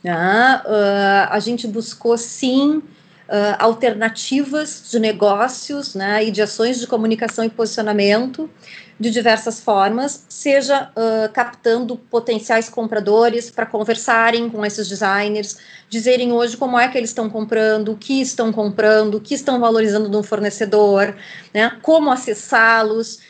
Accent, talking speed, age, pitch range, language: Brazilian, 130 wpm, 30-49, 210-245 Hz, Portuguese